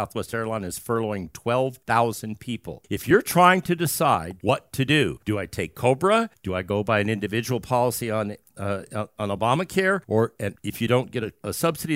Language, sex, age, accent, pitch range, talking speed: English, male, 50-69, American, 105-145 Hz, 190 wpm